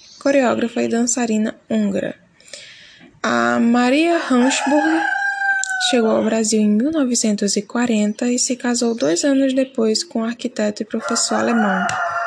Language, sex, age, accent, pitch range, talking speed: Portuguese, female, 10-29, Brazilian, 215-270 Hz, 115 wpm